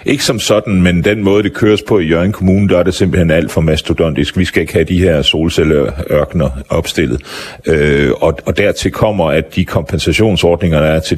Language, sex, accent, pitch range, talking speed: Danish, male, native, 75-90 Hz, 195 wpm